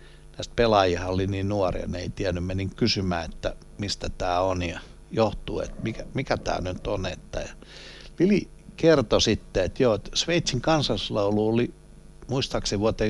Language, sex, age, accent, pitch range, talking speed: Finnish, male, 60-79, native, 90-120 Hz, 150 wpm